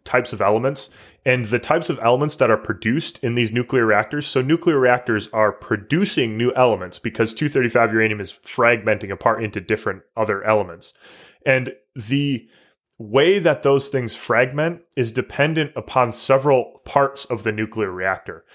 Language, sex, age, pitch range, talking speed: English, male, 20-39, 105-130 Hz, 155 wpm